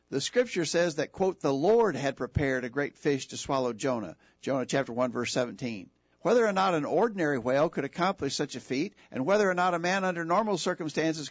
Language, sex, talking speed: English, male, 210 wpm